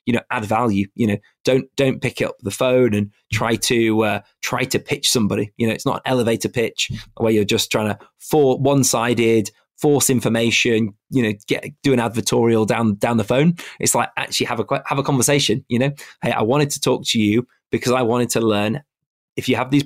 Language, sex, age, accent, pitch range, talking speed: English, male, 20-39, British, 110-130 Hz, 220 wpm